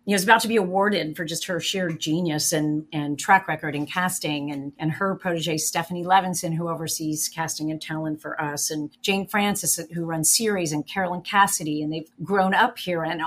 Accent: American